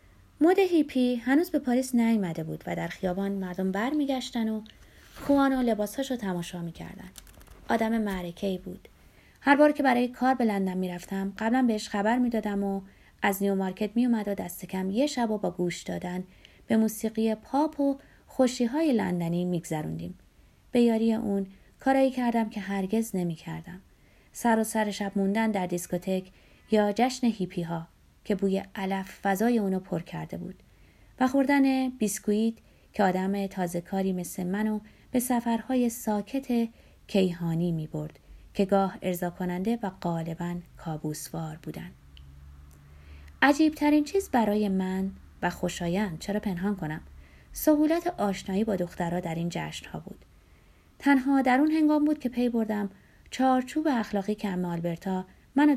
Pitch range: 180-240 Hz